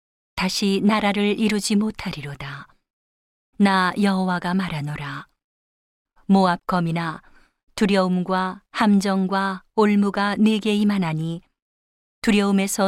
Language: Korean